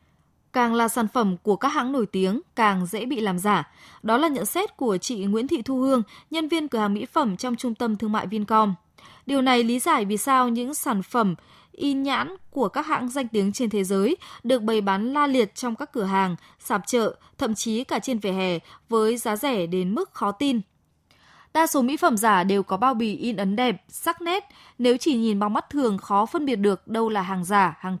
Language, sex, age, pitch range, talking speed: Vietnamese, female, 20-39, 205-270 Hz, 230 wpm